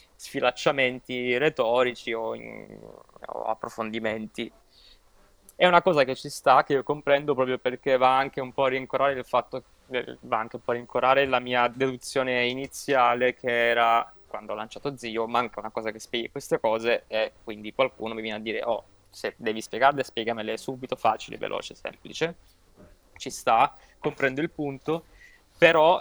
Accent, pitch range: native, 115-135 Hz